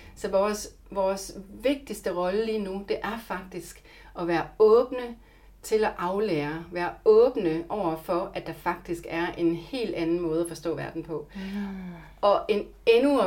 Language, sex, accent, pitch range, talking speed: Danish, female, native, 170-215 Hz, 160 wpm